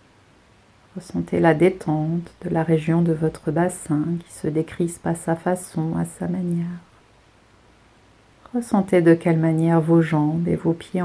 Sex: female